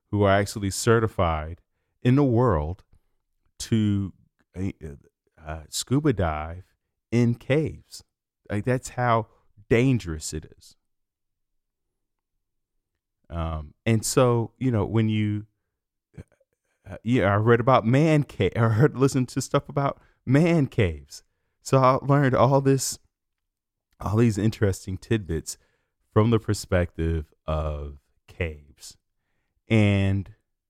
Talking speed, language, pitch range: 110 wpm, English, 85-115 Hz